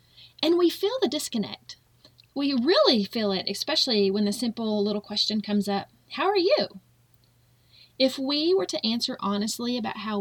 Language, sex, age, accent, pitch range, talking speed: English, female, 30-49, American, 195-260 Hz, 165 wpm